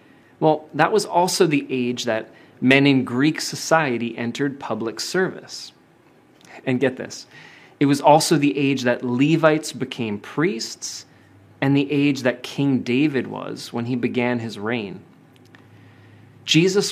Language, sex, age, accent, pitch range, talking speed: English, male, 30-49, American, 125-155 Hz, 140 wpm